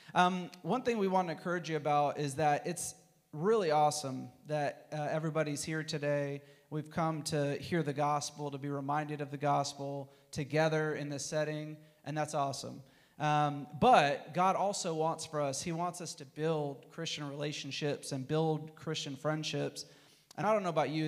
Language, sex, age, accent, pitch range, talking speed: English, male, 30-49, American, 140-160 Hz, 175 wpm